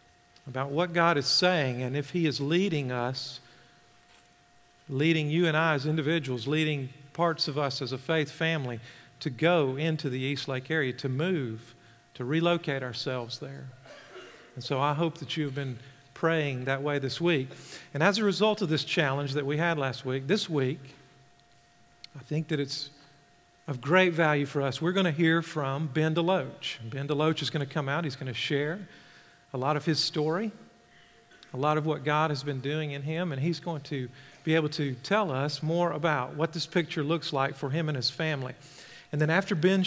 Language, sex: English, male